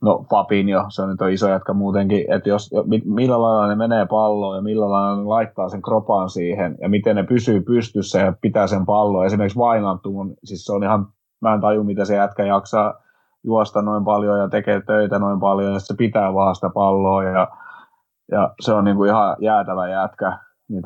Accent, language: native, Finnish